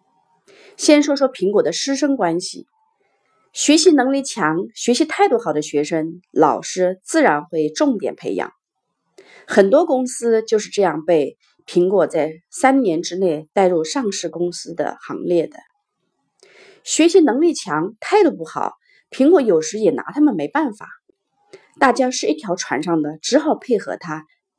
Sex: female